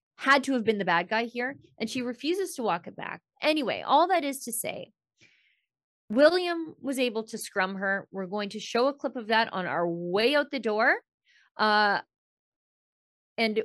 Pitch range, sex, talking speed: 185-240 Hz, female, 190 wpm